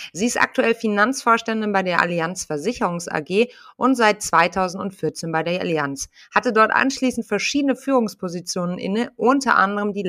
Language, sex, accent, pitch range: German, female, German, 185-240 Hz